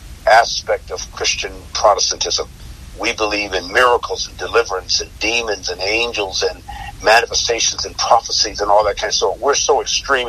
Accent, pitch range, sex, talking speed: American, 85-115 Hz, male, 155 wpm